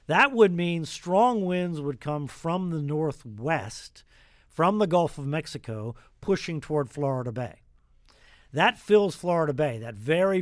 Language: English